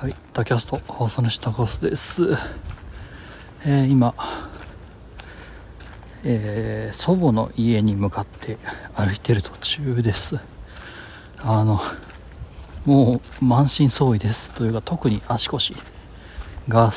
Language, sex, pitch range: Japanese, male, 100-135 Hz